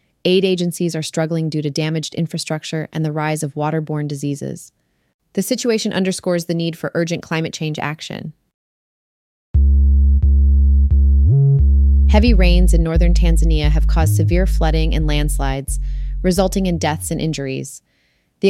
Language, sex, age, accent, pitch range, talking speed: English, female, 30-49, American, 150-180 Hz, 135 wpm